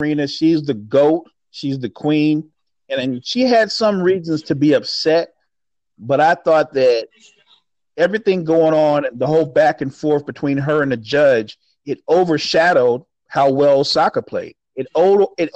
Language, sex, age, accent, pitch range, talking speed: English, male, 40-59, American, 135-175 Hz, 160 wpm